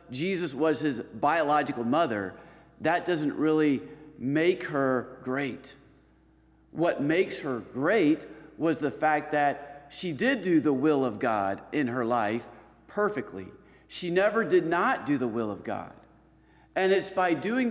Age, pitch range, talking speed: 50-69, 130-175 Hz, 145 wpm